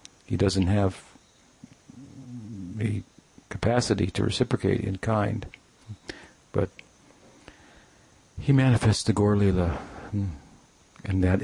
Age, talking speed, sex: 50-69, 90 wpm, male